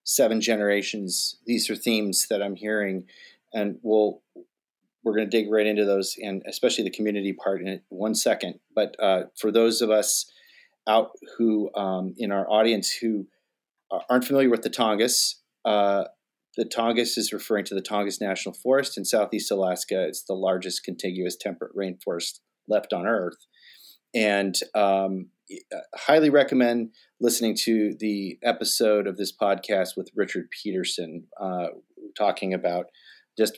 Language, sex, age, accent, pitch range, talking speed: English, male, 30-49, American, 95-115 Hz, 150 wpm